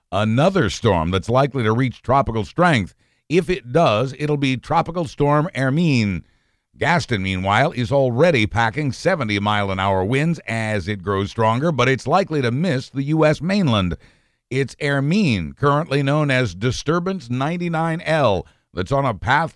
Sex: male